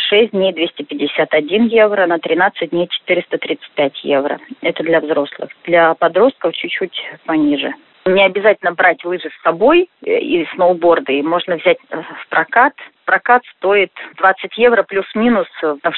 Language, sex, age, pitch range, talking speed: Russian, female, 30-49, 170-235 Hz, 130 wpm